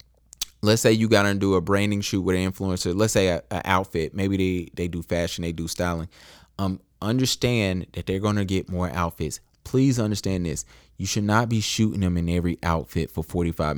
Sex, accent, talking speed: male, American, 205 wpm